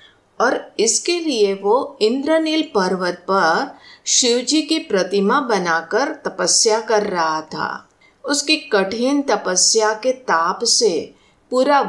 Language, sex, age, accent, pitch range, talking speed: Hindi, female, 50-69, native, 185-290 Hz, 110 wpm